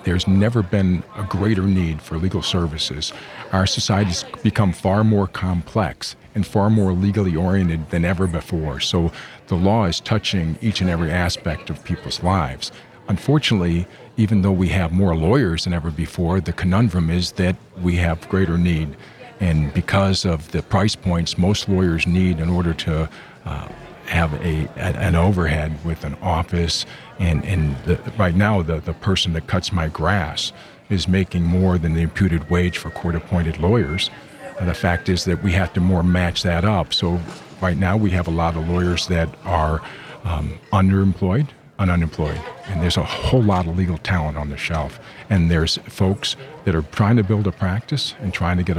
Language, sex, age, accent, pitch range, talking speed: English, male, 50-69, American, 85-100 Hz, 180 wpm